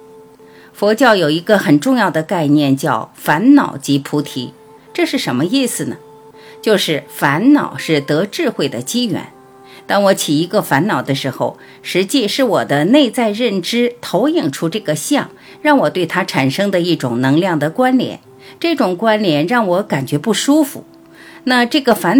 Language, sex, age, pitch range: Chinese, female, 50-69, 145-240 Hz